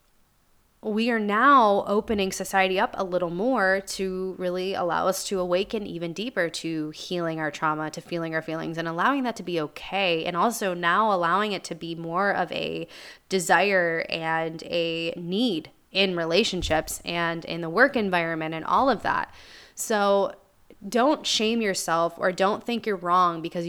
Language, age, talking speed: English, 20-39, 165 wpm